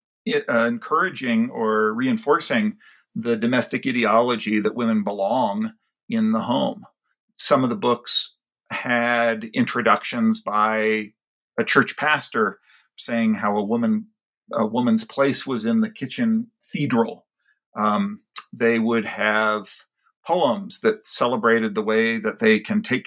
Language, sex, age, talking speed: English, male, 50-69, 125 wpm